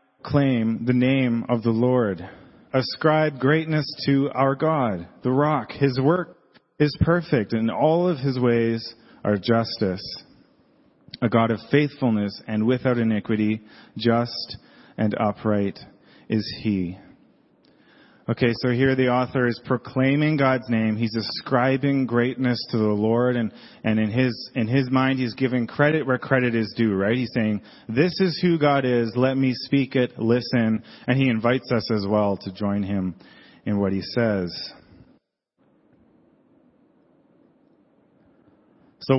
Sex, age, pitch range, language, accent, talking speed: male, 30-49, 105-130 Hz, English, American, 140 wpm